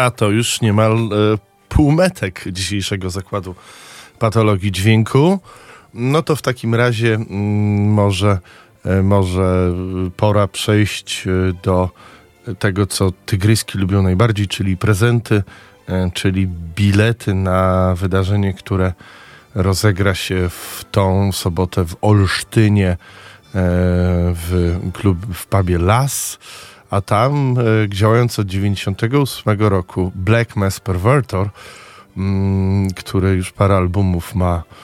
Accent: native